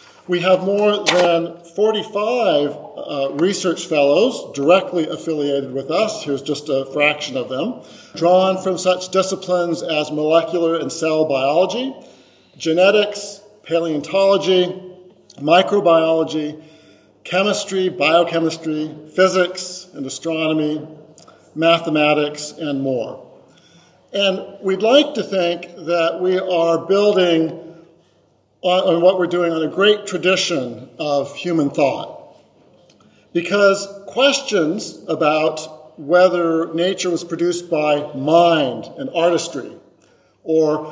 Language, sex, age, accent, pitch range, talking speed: English, male, 50-69, American, 155-185 Hz, 105 wpm